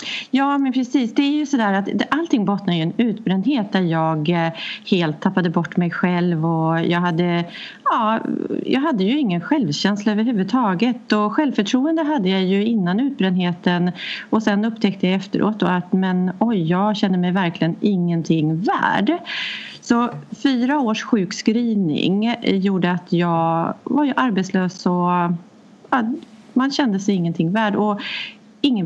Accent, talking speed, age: native, 145 wpm, 30-49